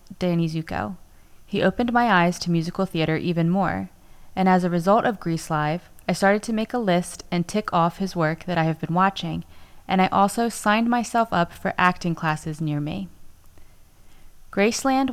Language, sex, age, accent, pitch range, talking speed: English, female, 20-39, American, 165-205 Hz, 185 wpm